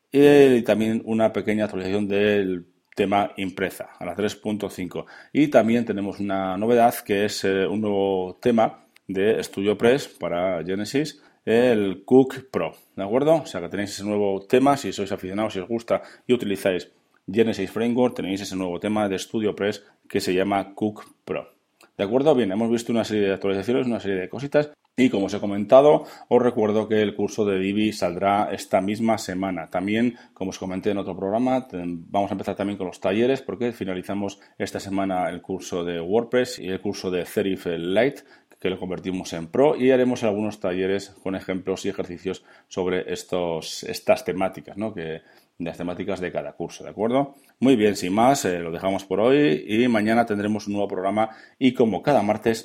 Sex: male